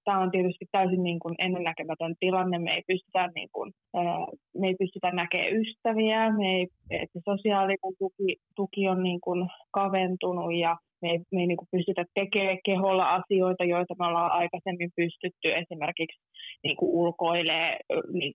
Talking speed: 140 wpm